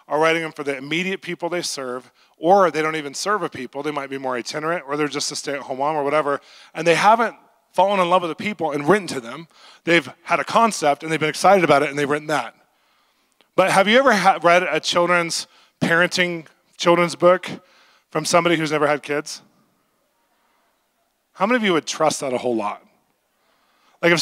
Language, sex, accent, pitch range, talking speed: English, male, American, 150-185 Hz, 210 wpm